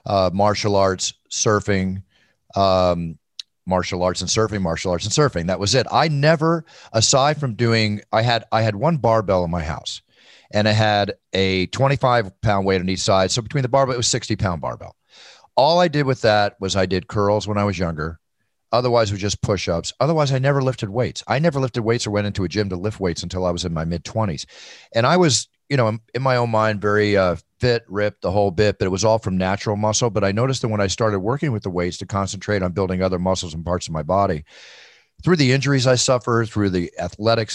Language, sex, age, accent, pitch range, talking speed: English, male, 40-59, American, 95-115 Hz, 230 wpm